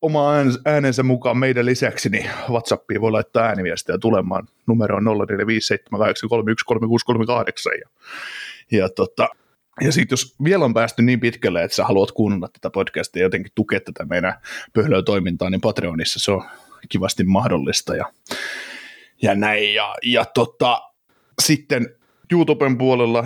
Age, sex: 30-49, male